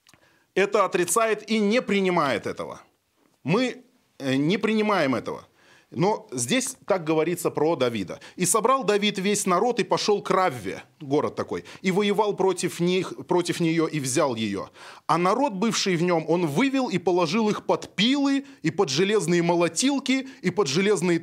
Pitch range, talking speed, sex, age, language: 155-220 Hz, 155 wpm, male, 20-39, Russian